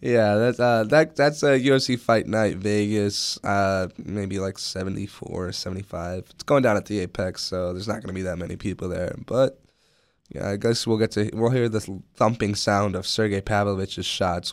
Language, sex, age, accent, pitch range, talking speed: English, male, 10-29, American, 95-115 Hz, 195 wpm